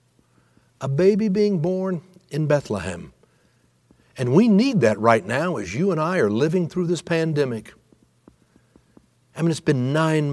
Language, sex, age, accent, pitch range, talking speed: English, male, 60-79, American, 115-180 Hz, 150 wpm